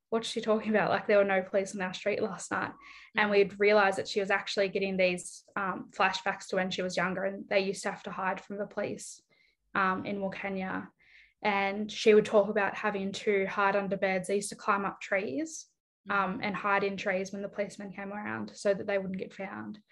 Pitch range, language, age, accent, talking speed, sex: 195-210 Hz, English, 10-29, Australian, 225 wpm, female